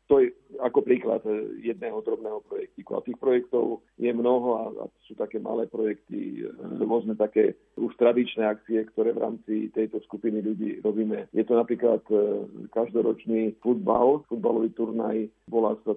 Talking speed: 145 wpm